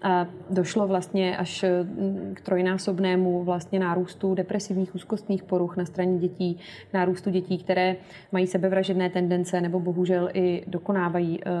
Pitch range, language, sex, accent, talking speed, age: 185-200 Hz, Czech, female, native, 125 wpm, 30-49